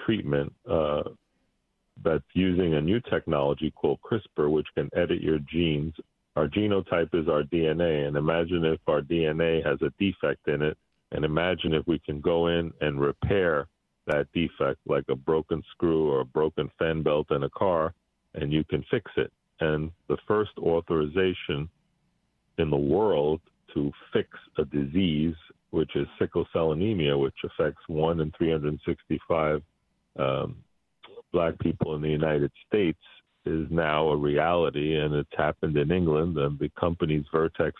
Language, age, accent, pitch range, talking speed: English, 40-59, American, 75-85 Hz, 155 wpm